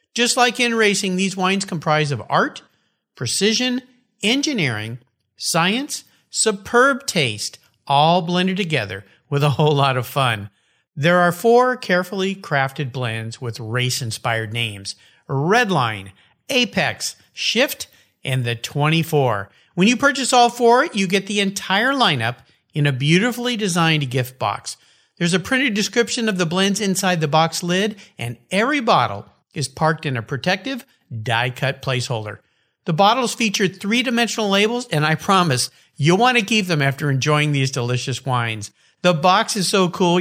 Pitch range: 130-210 Hz